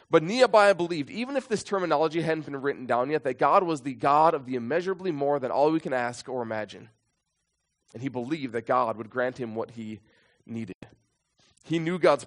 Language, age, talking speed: English, 20-39, 205 wpm